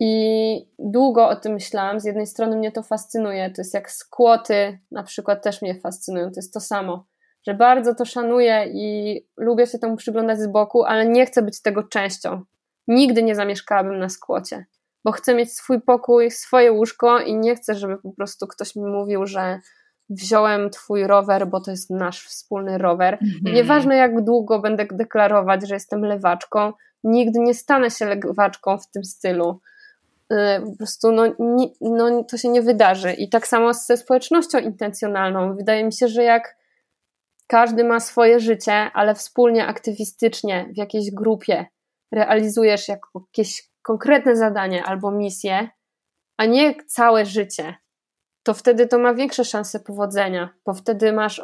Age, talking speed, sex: 20-39, 160 wpm, female